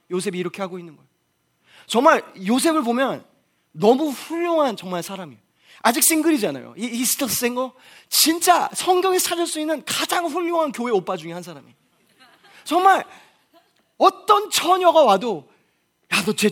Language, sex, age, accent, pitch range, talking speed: English, male, 20-39, Korean, 190-275 Hz, 125 wpm